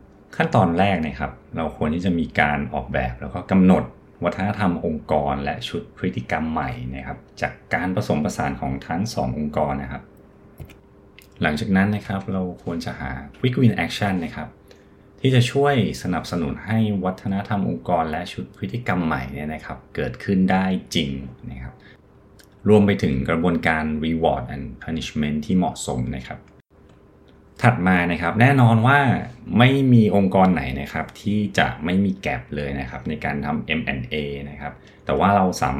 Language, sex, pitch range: Thai, male, 75-100 Hz